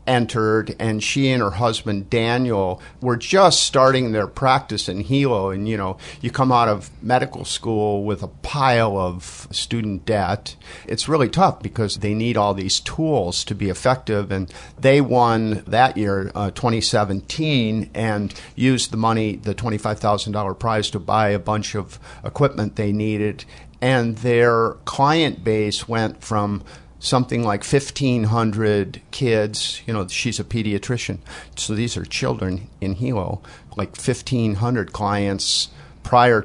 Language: English